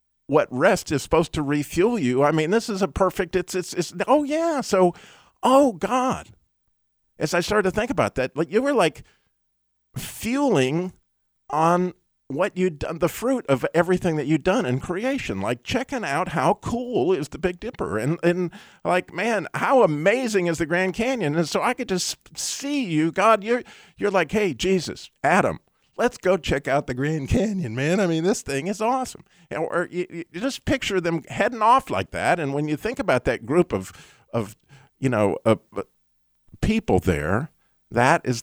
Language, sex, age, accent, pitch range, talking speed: English, male, 50-69, American, 120-195 Hz, 190 wpm